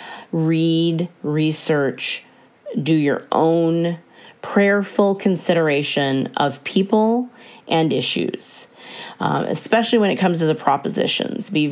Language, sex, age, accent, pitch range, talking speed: English, female, 40-59, American, 155-195 Hz, 100 wpm